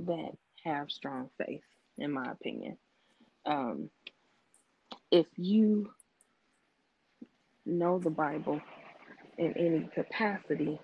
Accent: American